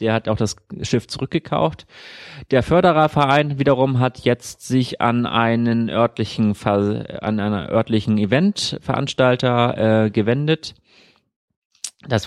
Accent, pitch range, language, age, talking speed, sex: German, 105-125 Hz, German, 30-49, 110 wpm, male